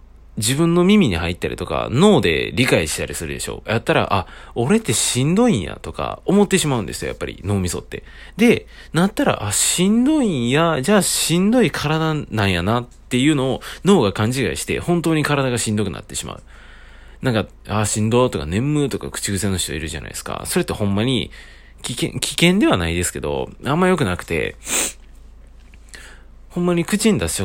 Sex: male